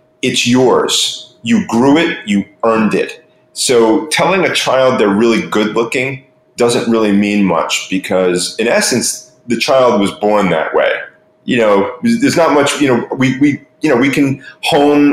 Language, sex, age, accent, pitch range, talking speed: English, male, 30-49, American, 110-140 Hz, 170 wpm